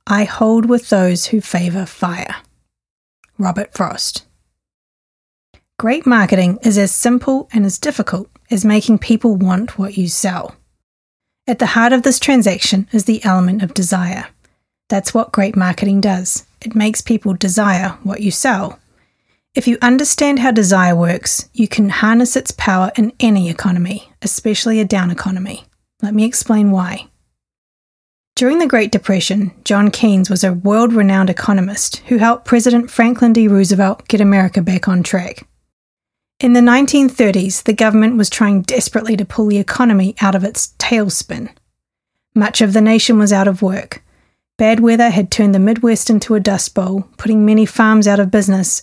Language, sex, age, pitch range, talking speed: English, female, 30-49, 195-230 Hz, 160 wpm